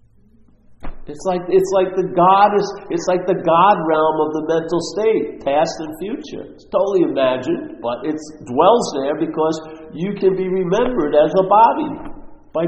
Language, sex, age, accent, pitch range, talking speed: English, male, 50-69, American, 155-200 Hz, 160 wpm